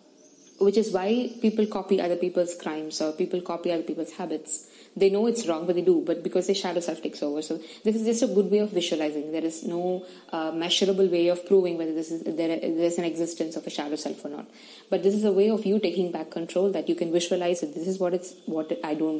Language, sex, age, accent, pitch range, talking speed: English, female, 20-39, Indian, 170-205 Hz, 250 wpm